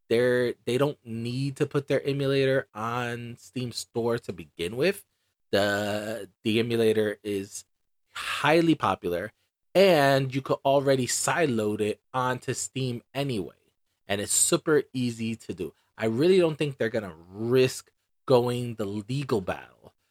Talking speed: 135 wpm